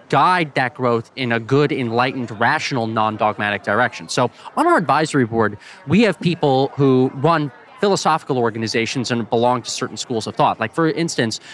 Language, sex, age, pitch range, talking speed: English, male, 20-39, 120-170 Hz, 165 wpm